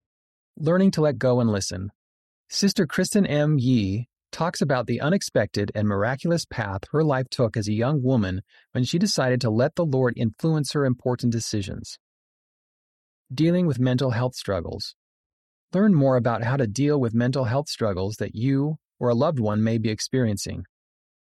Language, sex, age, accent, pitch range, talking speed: English, male, 30-49, American, 110-150 Hz, 165 wpm